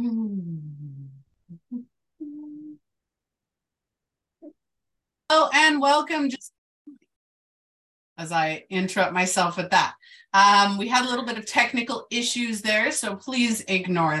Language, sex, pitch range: English, female, 185-260 Hz